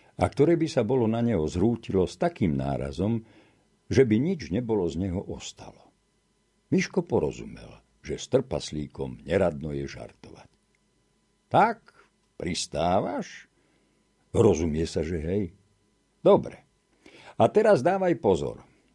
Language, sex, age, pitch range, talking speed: Slovak, male, 60-79, 100-135 Hz, 115 wpm